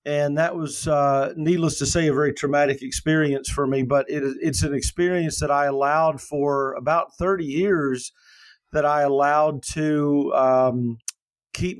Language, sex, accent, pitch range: English, male, American, 135-155 Hz